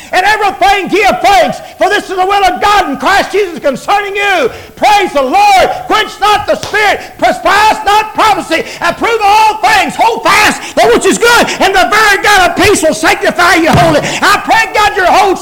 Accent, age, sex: American, 50-69, male